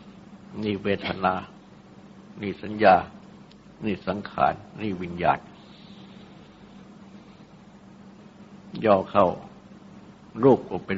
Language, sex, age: Thai, male, 60-79